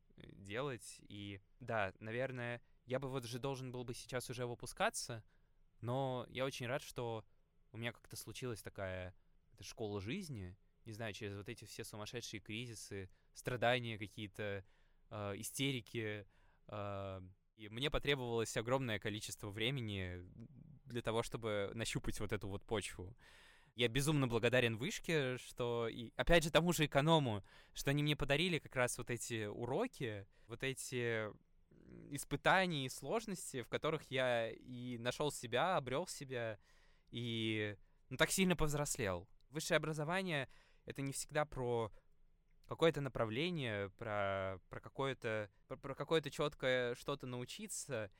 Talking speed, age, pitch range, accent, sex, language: 135 wpm, 20-39, 105-140 Hz, native, male, Russian